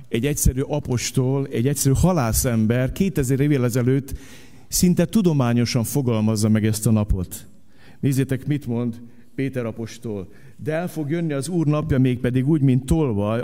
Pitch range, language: 125-170 Hz, Hungarian